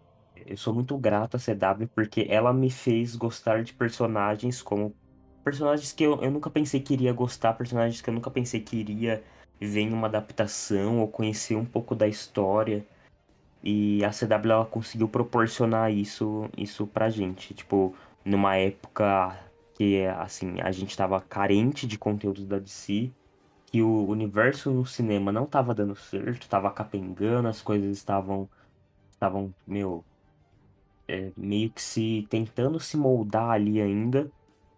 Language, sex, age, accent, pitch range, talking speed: Portuguese, male, 10-29, Brazilian, 100-115 Hz, 150 wpm